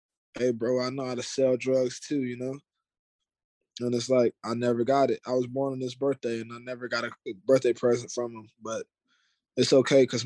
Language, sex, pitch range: English, male, 120-140 Hz